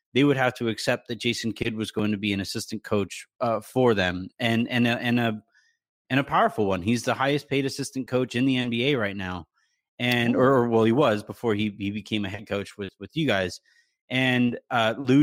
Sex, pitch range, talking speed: male, 110-135 Hz, 225 wpm